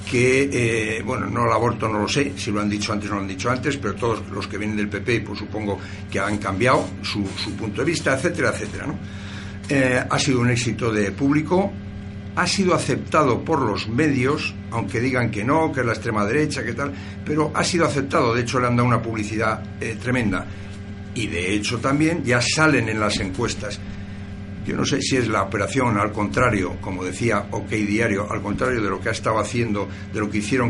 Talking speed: 215 wpm